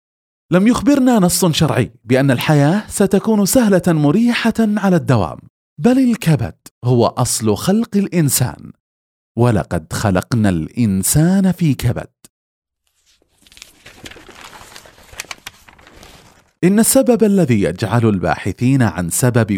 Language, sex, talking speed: Arabic, male, 90 wpm